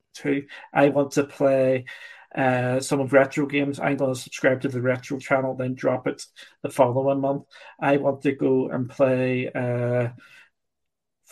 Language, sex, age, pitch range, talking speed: English, male, 40-59, 130-145 Hz, 165 wpm